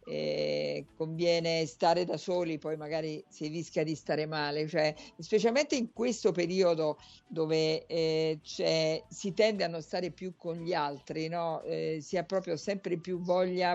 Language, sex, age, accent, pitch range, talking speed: Italian, female, 50-69, native, 160-195 Hz, 160 wpm